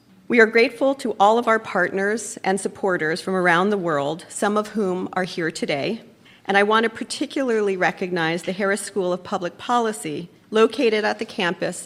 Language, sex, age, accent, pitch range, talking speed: English, female, 40-59, American, 170-210 Hz, 180 wpm